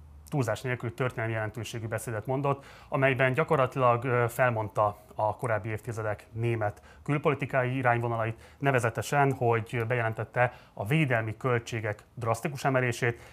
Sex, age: male, 30-49